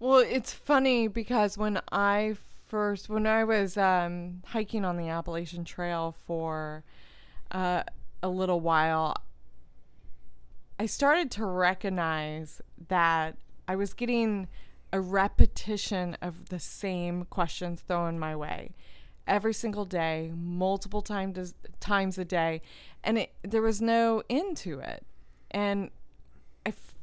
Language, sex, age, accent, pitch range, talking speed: English, female, 20-39, American, 170-225 Hz, 120 wpm